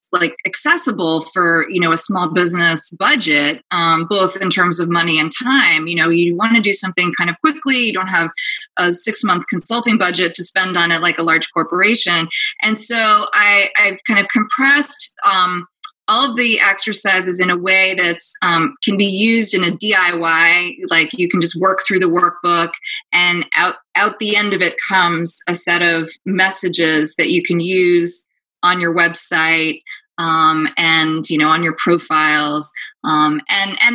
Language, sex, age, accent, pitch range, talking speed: English, female, 20-39, American, 170-210 Hz, 180 wpm